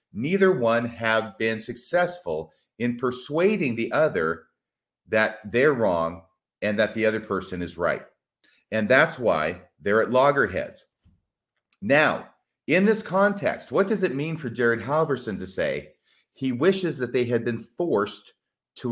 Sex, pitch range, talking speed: male, 110-160 Hz, 145 wpm